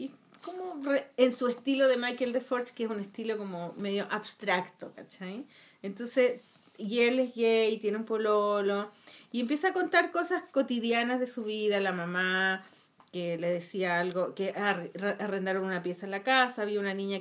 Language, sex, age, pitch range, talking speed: Spanish, female, 30-49, 190-250 Hz, 170 wpm